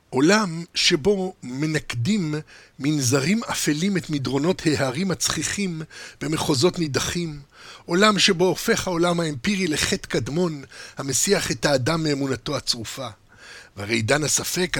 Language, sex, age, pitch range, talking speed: Hebrew, male, 50-69, 145-190 Hz, 105 wpm